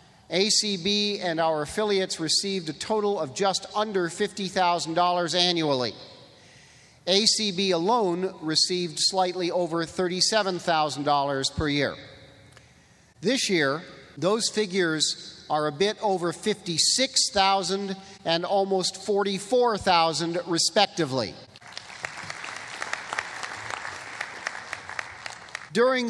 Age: 50-69